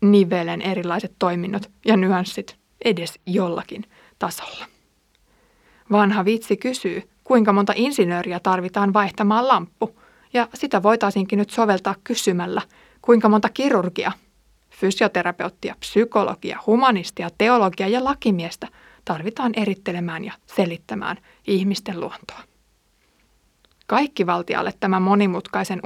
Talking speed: 95 wpm